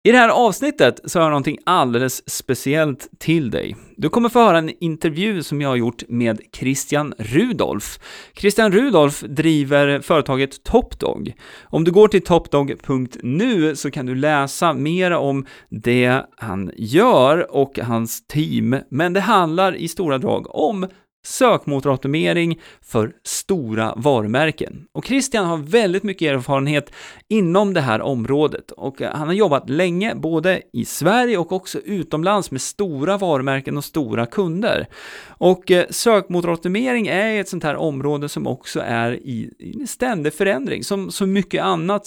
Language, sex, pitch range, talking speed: Swedish, male, 140-195 Hz, 145 wpm